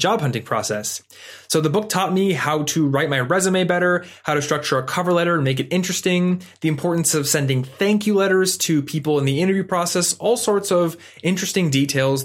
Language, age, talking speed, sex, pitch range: English, 20-39, 205 wpm, male, 130-165 Hz